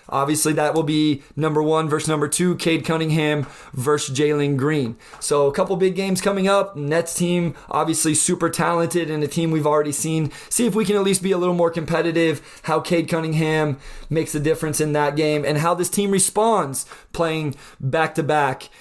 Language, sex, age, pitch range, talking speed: English, male, 20-39, 150-180 Hz, 190 wpm